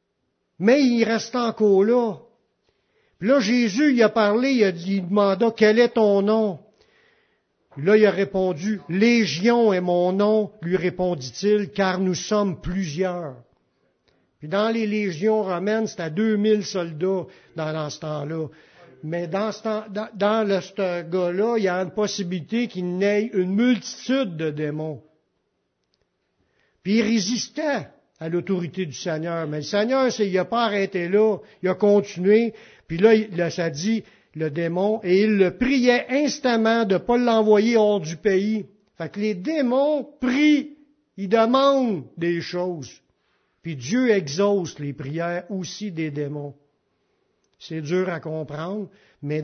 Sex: male